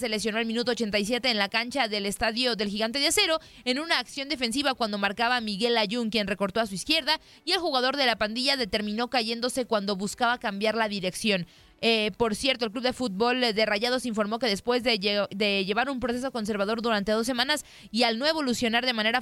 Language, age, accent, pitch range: Spanish, 20-39, Mexican, 215-255 Hz